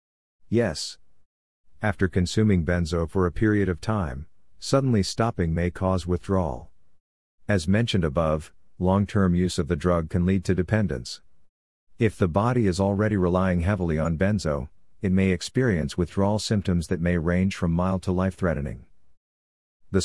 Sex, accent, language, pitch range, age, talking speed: male, American, English, 75-100 Hz, 50-69, 145 wpm